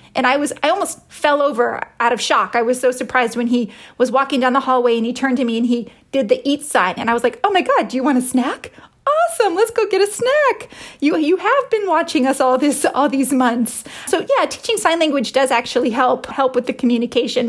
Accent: American